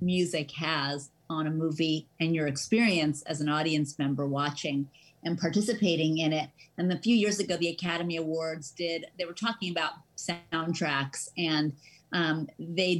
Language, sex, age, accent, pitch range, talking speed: English, female, 40-59, American, 155-180 Hz, 155 wpm